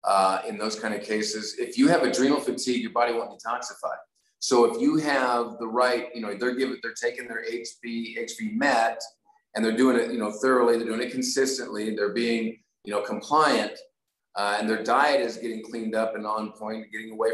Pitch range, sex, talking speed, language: 110-125 Hz, male, 210 wpm, English